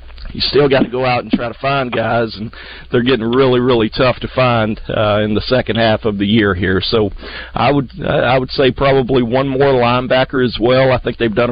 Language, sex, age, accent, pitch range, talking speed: English, male, 50-69, American, 115-135 Hz, 230 wpm